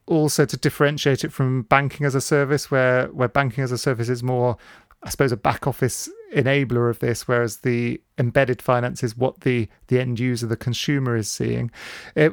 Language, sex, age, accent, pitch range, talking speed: English, male, 40-59, British, 125-150 Hz, 195 wpm